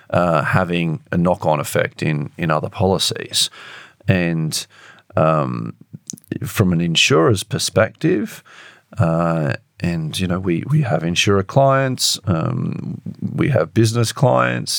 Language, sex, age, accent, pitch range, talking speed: English, male, 40-59, Australian, 95-115 Hz, 120 wpm